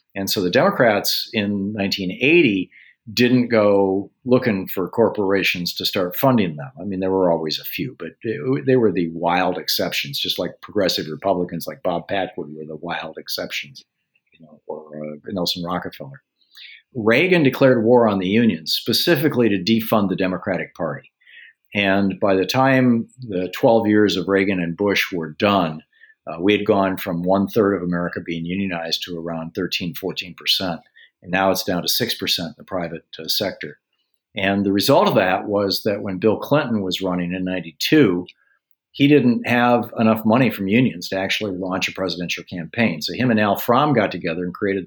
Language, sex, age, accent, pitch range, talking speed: English, male, 50-69, American, 90-110 Hz, 175 wpm